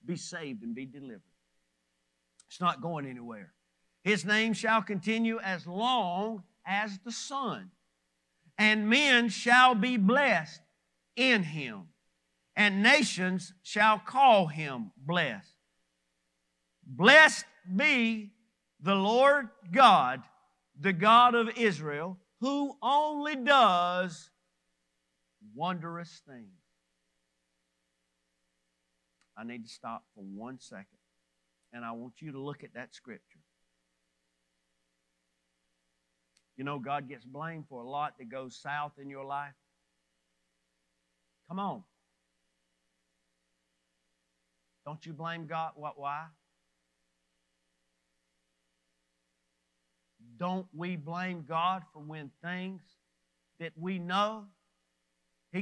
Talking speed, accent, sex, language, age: 100 wpm, American, male, English, 50-69